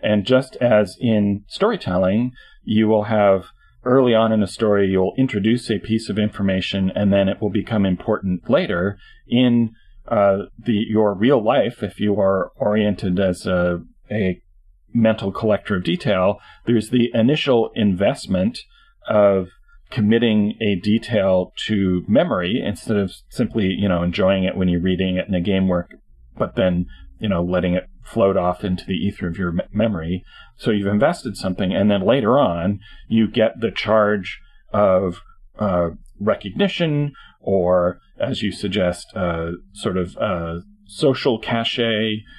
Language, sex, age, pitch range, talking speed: English, male, 40-59, 90-110 Hz, 150 wpm